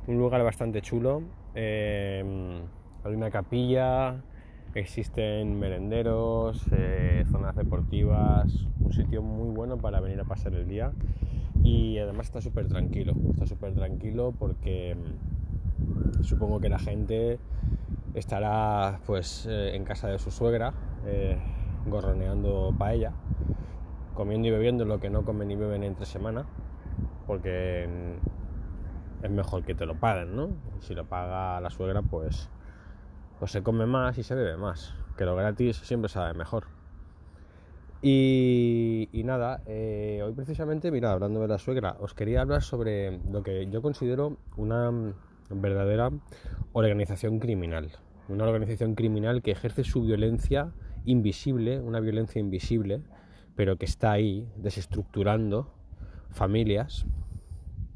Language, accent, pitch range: Spanish, Spanish, 90-115 Hz